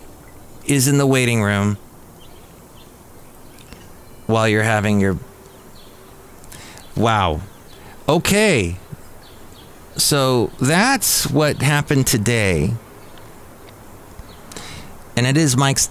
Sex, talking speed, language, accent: male, 75 wpm, English, American